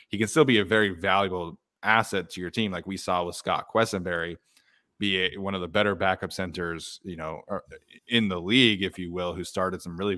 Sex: male